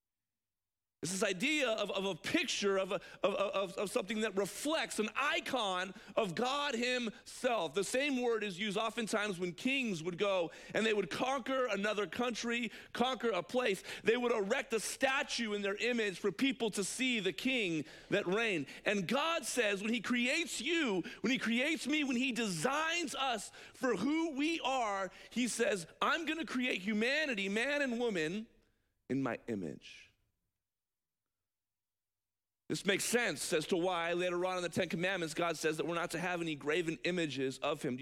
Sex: male